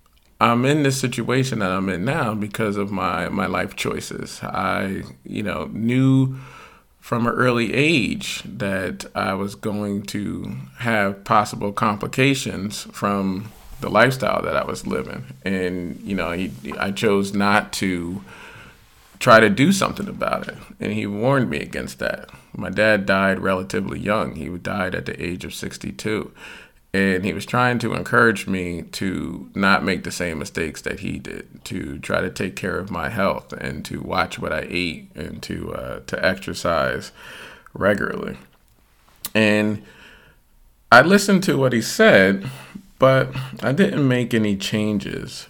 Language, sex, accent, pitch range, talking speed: English, male, American, 90-120 Hz, 155 wpm